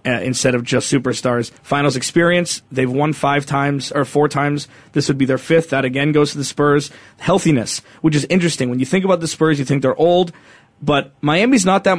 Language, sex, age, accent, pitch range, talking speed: English, male, 20-39, American, 135-155 Hz, 215 wpm